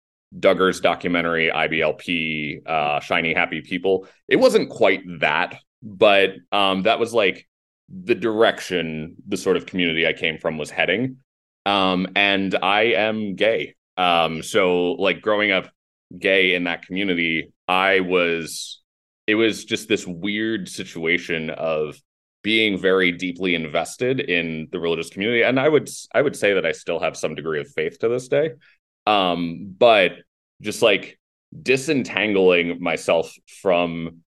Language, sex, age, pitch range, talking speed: English, male, 30-49, 85-105 Hz, 145 wpm